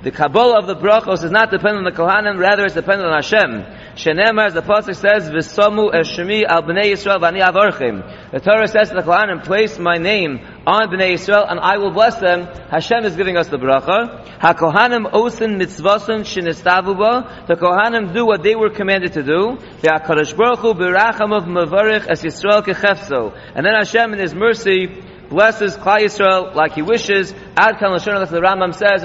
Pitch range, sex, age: 180-220 Hz, male, 40-59